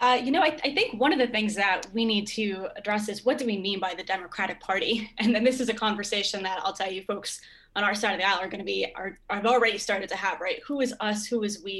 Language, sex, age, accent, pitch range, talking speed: English, female, 10-29, American, 195-230 Hz, 305 wpm